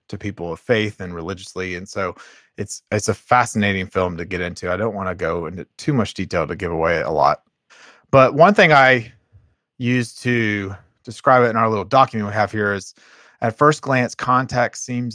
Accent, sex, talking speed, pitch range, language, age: American, male, 200 wpm, 95-120 Hz, English, 30-49